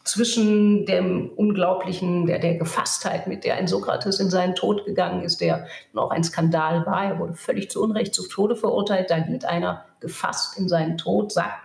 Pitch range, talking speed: 175-220 Hz, 185 wpm